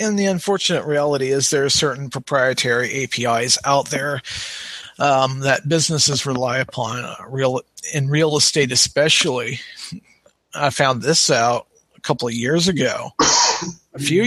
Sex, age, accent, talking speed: male, 40-59, American, 145 wpm